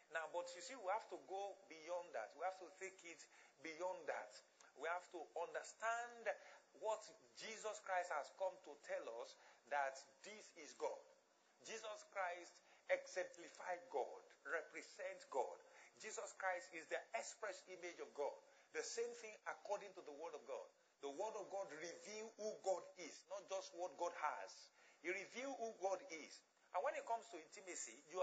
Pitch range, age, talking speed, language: 160-220 Hz, 50-69, 170 wpm, English